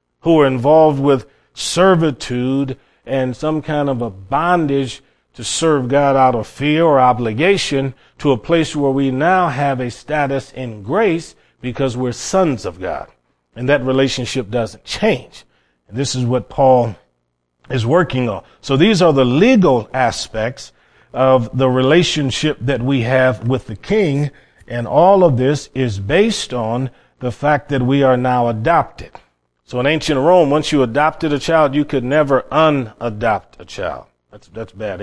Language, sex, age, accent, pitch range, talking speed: English, male, 40-59, American, 120-150 Hz, 160 wpm